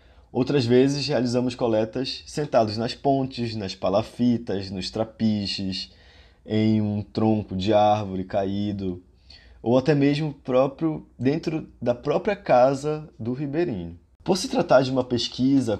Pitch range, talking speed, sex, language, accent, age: 95-130 Hz, 125 wpm, male, Portuguese, Brazilian, 20-39